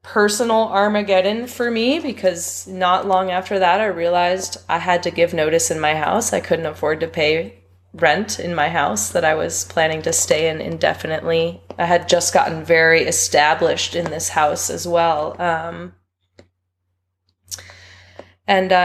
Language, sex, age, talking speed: English, female, 20-39, 155 wpm